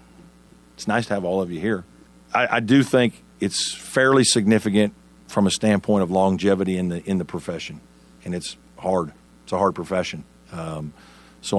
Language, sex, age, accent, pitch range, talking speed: English, male, 50-69, American, 75-95 Hz, 175 wpm